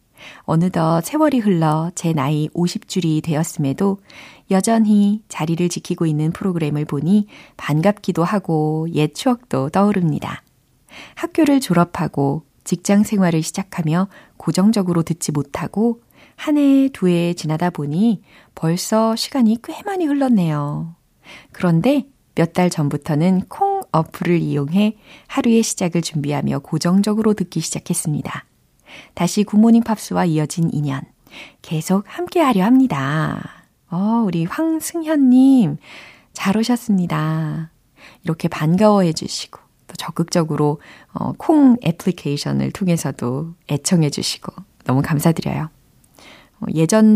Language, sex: Korean, female